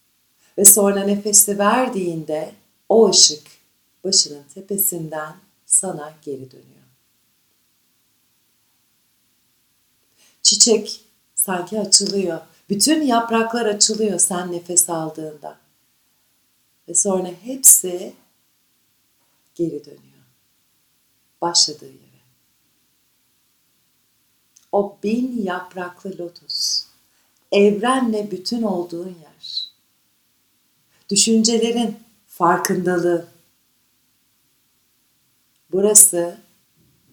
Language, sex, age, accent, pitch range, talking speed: Turkish, female, 50-69, native, 155-215 Hz, 60 wpm